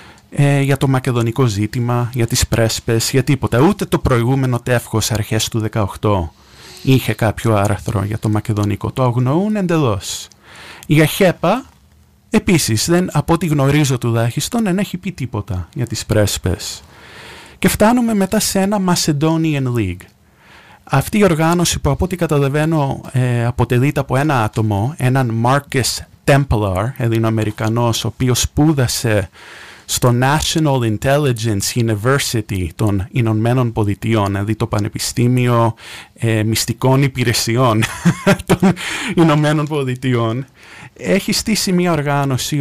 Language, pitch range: English, 110-140 Hz